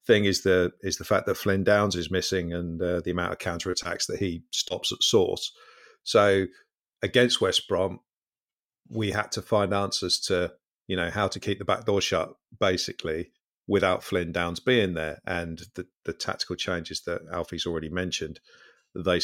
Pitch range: 85-95 Hz